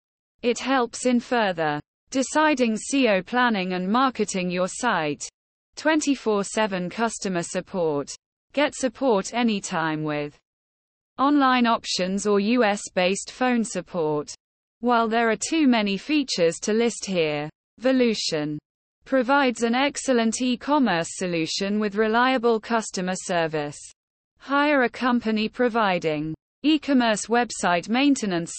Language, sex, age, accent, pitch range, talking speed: English, female, 20-39, British, 180-250 Hz, 105 wpm